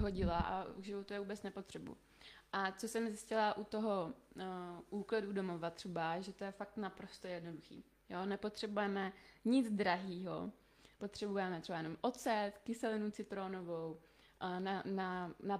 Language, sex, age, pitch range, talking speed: Czech, female, 20-39, 185-215 Hz, 140 wpm